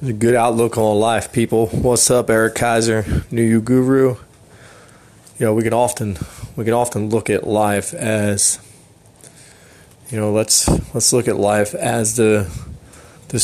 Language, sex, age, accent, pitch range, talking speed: English, male, 20-39, American, 100-115 Hz, 155 wpm